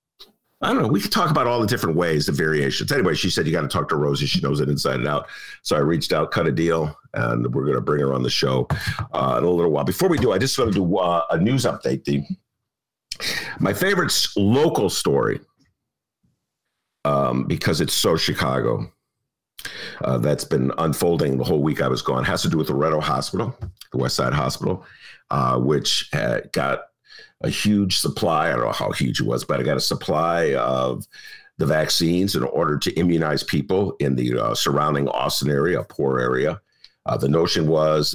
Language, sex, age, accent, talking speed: English, male, 50-69, American, 205 wpm